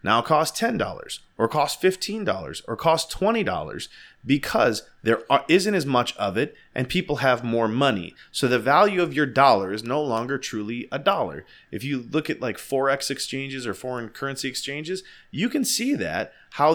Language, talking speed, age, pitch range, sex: English, 185 wpm, 30-49, 125-180 Hz, male